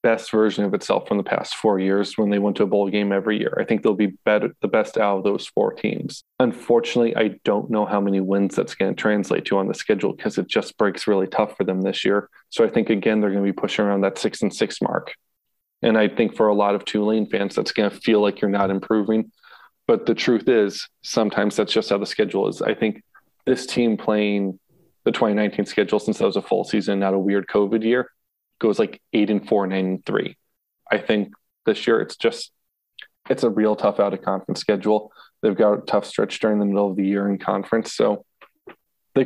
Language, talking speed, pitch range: English, 235 wpm, 100-110 Hz